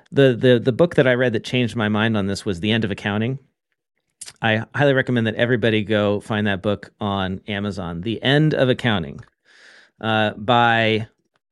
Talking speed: 180 wpm